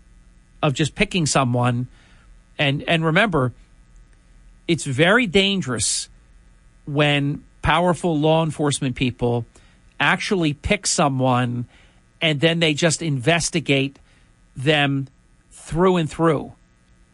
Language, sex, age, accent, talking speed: English, male, 50-69, American, 95 wpm